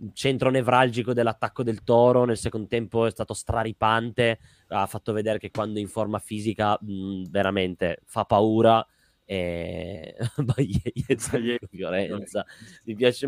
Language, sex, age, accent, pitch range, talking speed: Italian, male, 20-39, native, 105-135 Hz, 120 wpm